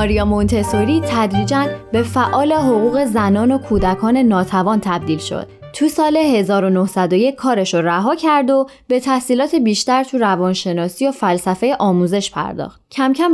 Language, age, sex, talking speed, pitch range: Persian, 20-39, female, 140 wpm, 185-265 Hz